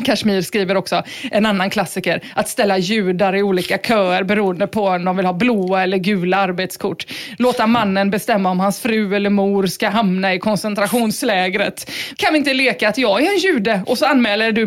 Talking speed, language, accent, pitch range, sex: 190 wpm, English, Swedish, 190-225 Hz, female